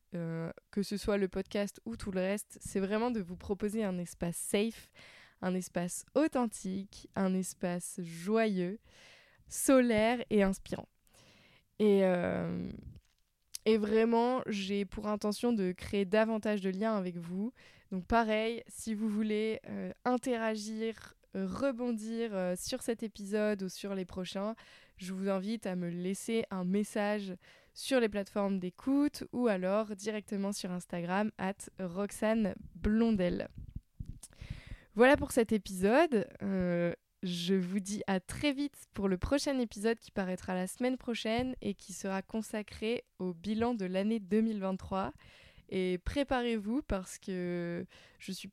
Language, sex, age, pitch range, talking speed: French, female, 20-39, 190-225 Hz, 140 wpm